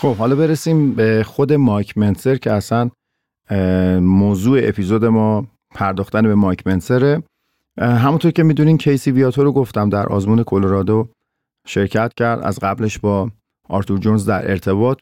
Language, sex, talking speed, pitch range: Persian, male, 140 wpm, 100-130 Hz